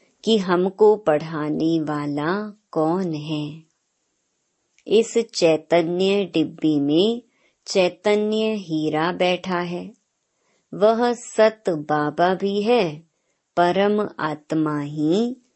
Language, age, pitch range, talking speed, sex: Hindi, 30-49, 155-200 Hz, 85 wpm, male